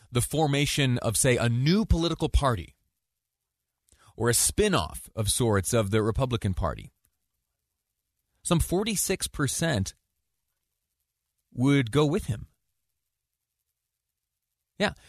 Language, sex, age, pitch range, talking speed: English, male, 30-49, 95-125 Hz, 95 wpm